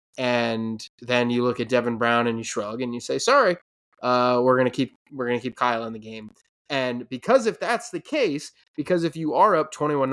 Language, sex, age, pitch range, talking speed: English, male, 20-39, 120-135 Hz, 230 wpm